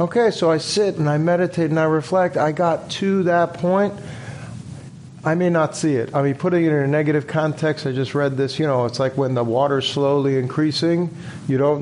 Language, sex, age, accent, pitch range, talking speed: English, male, 50-69, American, 135-160 Hz, 220 wpm